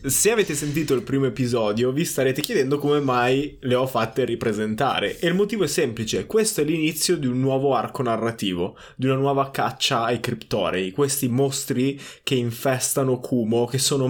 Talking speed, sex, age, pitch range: 175 wpm, male, 20-39, 120-145 Hz